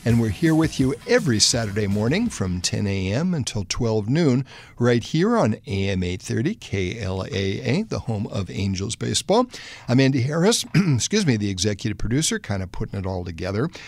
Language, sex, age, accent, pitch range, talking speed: English, male, 60-79, American, 105-130 Hz, 170 wpm